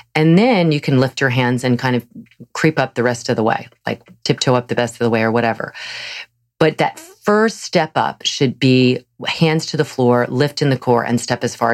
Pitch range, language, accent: 125-155 Hz, English, American